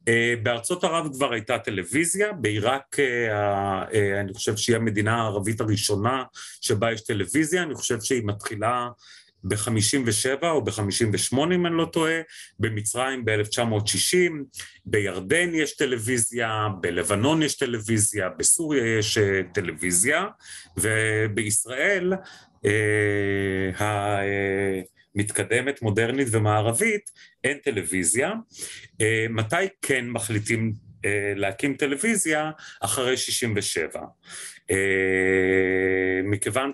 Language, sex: Hebrew, male